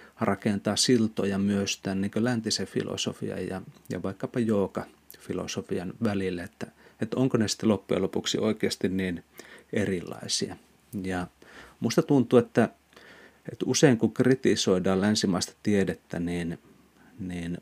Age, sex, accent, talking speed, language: 30-49, male, native, 120 wpm, Finnish